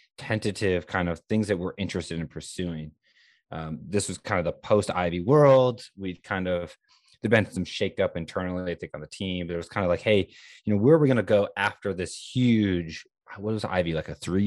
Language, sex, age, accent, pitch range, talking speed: English, male, 20-39, American, 85-105 Hz, 230 wpm